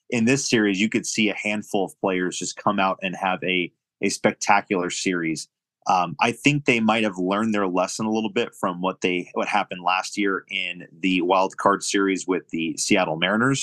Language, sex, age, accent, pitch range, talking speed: English, male, 30-49, American, 90-115 Hz, 205 wpm